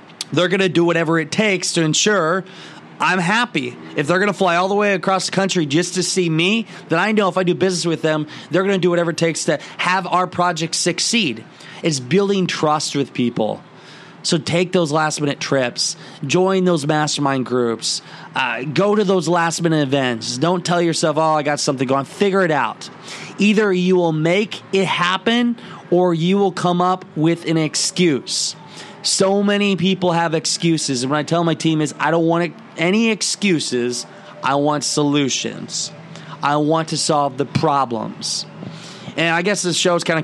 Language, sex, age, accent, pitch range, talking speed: English, male, 20-39, American, 150-180 Hz, 190 wpm